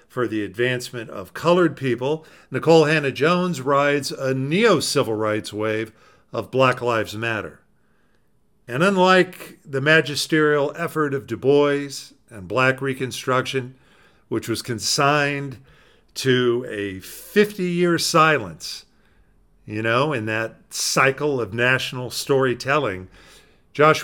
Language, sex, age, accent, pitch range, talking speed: English, male, 50-69, American, 110-150 Hz, 110 wpm